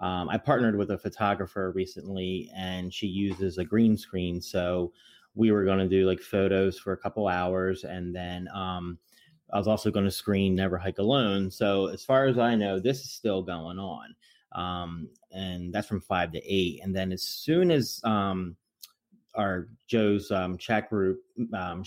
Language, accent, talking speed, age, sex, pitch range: English, American, 185 wpm, 30-49, male, 90-100 Hz